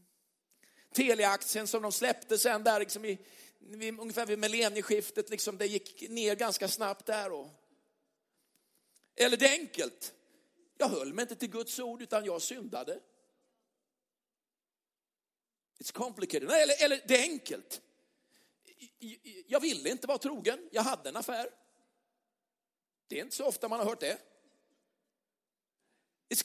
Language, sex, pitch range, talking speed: Swedish, male, 200-280 Hz, 130 wpm